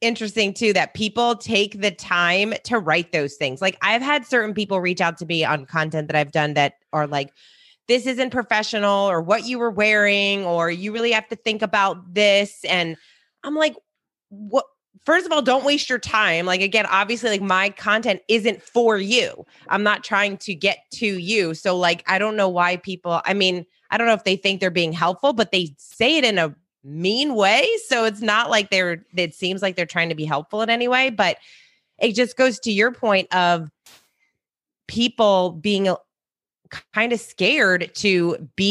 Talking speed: 200 wpm